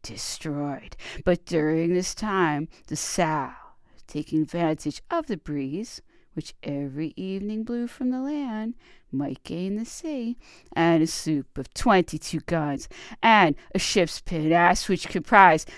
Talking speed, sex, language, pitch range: 135 wpm, female, English, 155-245 Hz